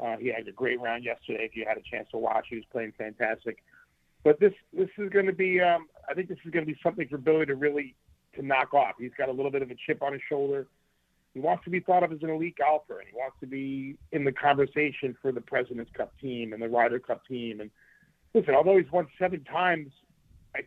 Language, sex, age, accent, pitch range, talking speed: English, male, 40-59, American, 115-150 Hz, 260 wpm